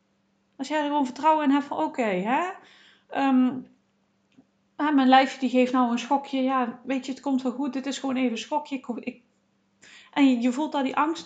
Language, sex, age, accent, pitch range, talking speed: Dutch, female, 40-59, Dutch, 230-280 Hz, 215 wpm